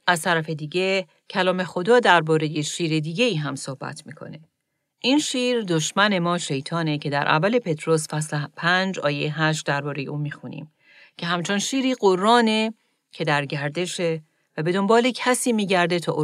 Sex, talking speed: female, 155 wpm